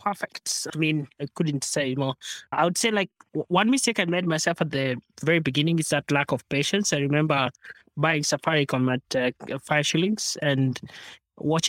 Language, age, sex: English, 20-39, male